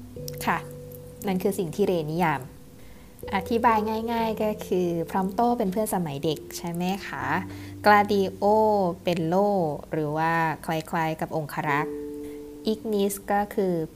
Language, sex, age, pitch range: Thai, female, 20-39, 160-200 Hz